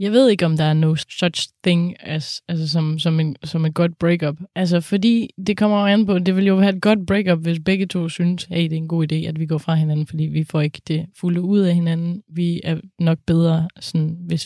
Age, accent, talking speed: 20-39, native, 265 wpm